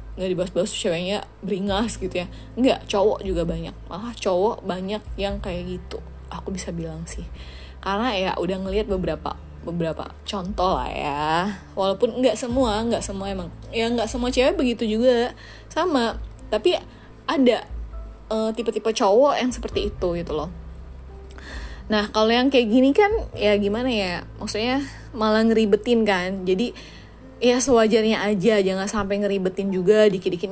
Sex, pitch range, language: female, 185-230 Hz, Indonesian